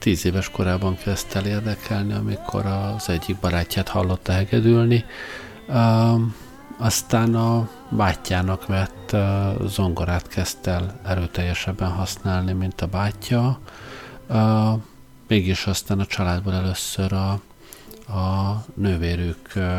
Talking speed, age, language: 100 wpm, 50-69, Hungarian